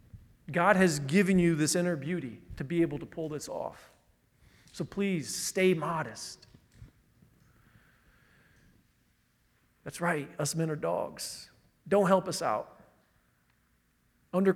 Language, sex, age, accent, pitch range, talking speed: English, male, 40-59, American, 160-200 Hz, 120 wpm